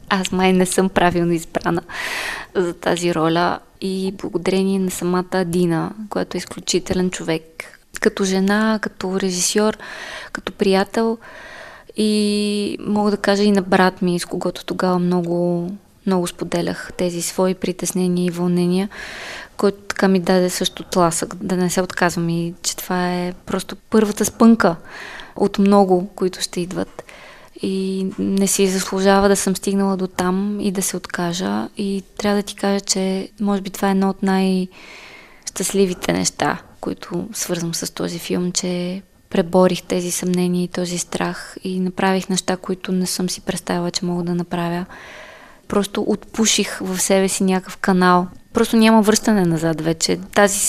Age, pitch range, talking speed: 20-39, 180-200 Hz, 155 wpm